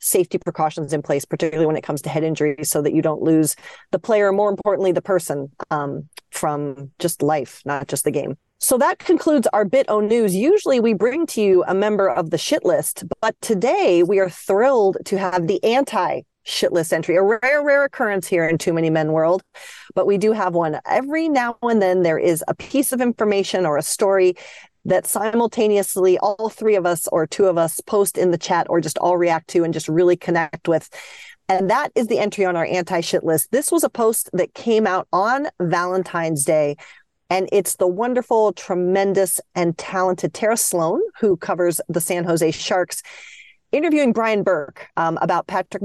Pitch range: 170-210 Hz